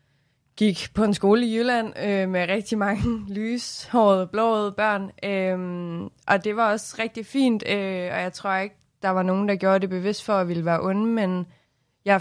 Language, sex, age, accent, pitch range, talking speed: Danish, female, 20-39, native, 175-210 Hz, 205 wpm